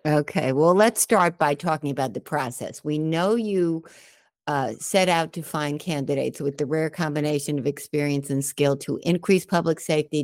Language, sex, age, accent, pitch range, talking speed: English, female, 60-79, American, 145-175 Hz, 175 wpm